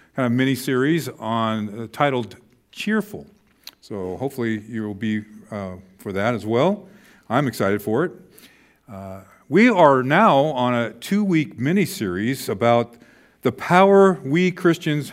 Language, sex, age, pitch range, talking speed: English, male, 50-69, 115-165 Hz, 130 wpm